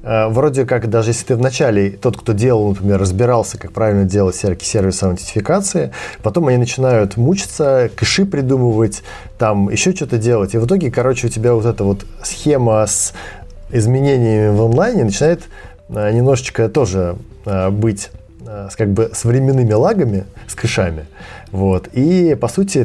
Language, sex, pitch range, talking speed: Russian, male, 100-125 Hz, 145 wpm